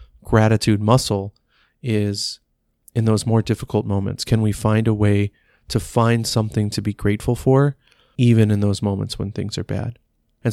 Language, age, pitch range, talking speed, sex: English, 30-49, 105-120 Hz, 165 wpm, male